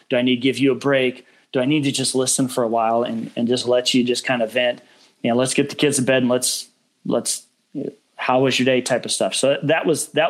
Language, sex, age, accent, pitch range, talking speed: English, male, 30-49, American, 125-140 Hz, 280 wpm